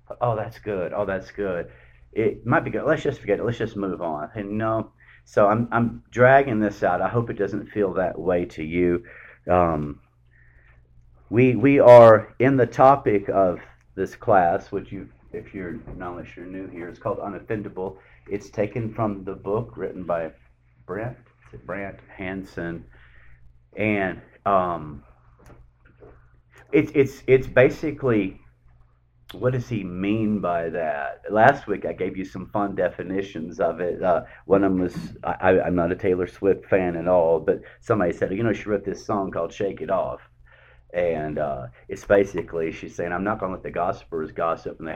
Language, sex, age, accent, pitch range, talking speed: English, male, 40-59, American, 80-110 Hz, 180 wpm